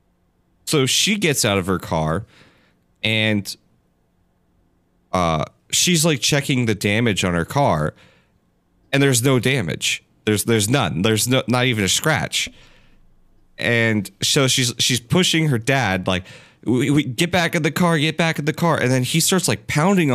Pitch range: 95-130 Hz